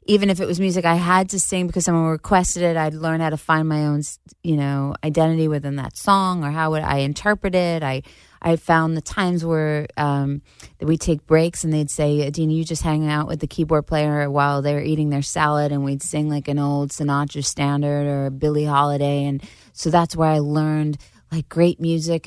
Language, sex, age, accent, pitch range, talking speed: English, female, 20-39, American, 145-165 Hz, 220 wpm